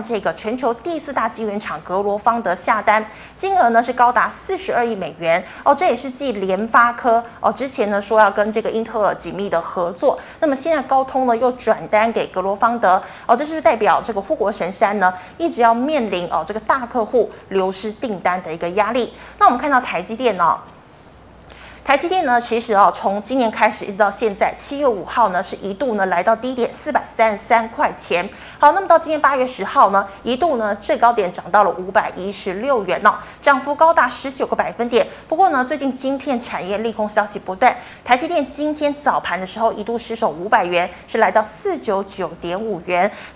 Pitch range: 200-265 Hz